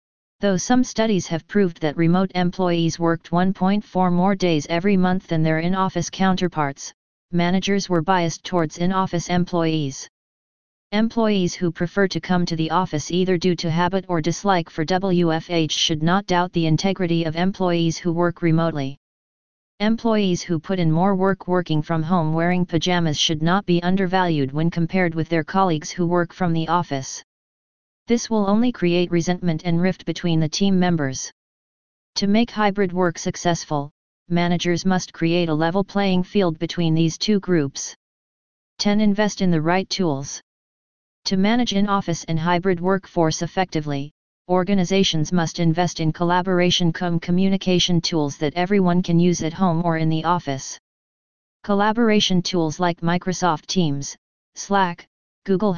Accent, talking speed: American, 150 wpm